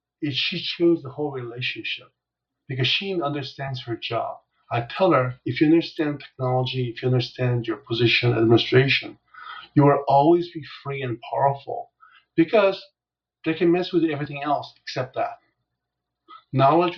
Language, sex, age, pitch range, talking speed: English, male, 50-69, 125-160 Hz, 145 wpm